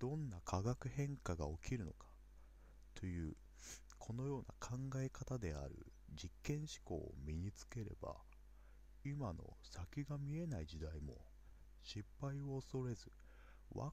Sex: male